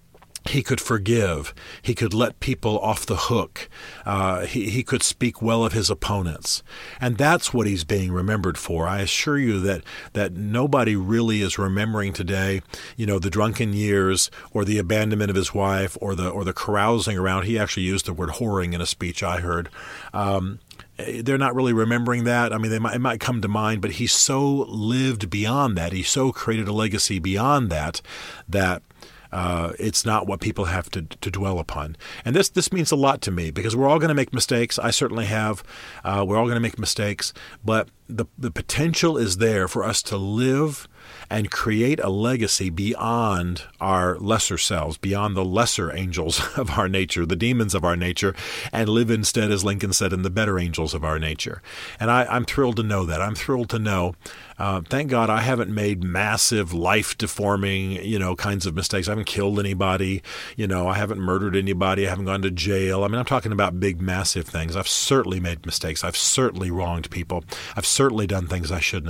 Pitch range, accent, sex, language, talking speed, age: 95-115 Hz, American, male, English, 200 wpm, 40-59